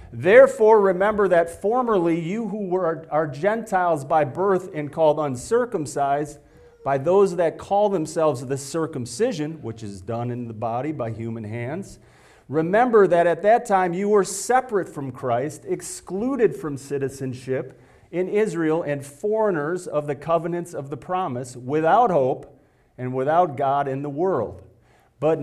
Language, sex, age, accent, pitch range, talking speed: English, male, 40-59, American, 145-190 Hz, 145 wpm